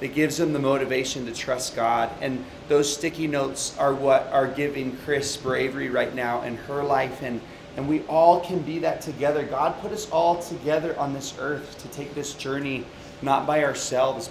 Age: 30-49